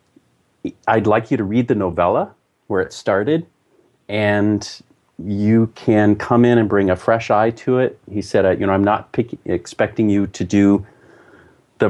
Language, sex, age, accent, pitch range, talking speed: English, male, 40-59, American, 100-120 Hz, 170 wpm